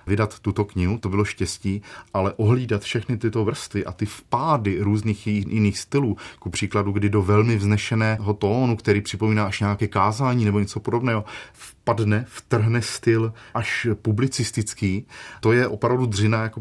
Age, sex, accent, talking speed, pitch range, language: 30-49, male, native, 150 wpm, 90-110 Hz, Czech